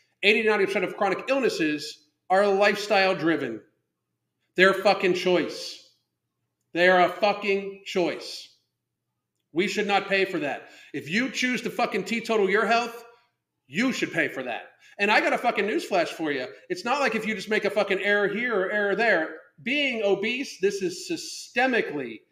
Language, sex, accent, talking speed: English, male, American, 165 wpm